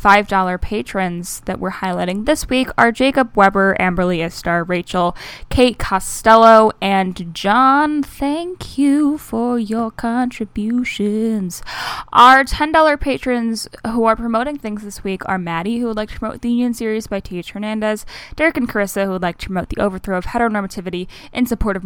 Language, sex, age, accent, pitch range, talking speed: English, female, 10-29, American, 180-240 Hz, 165 wpm